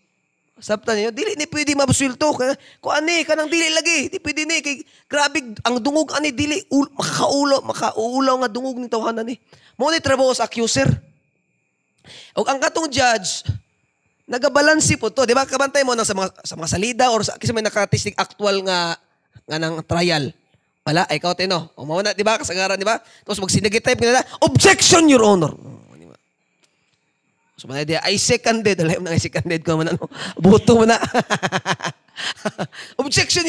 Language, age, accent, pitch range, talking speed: Filipino, 20-39, native, 195-270 Hz, 155 wpm